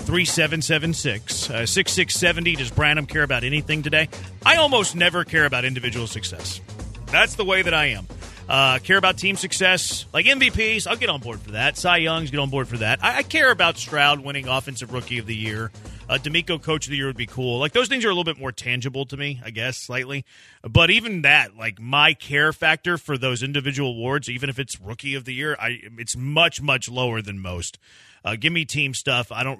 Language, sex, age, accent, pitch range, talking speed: English, male, 30-49, American, 115-165 Hz, 220 wpm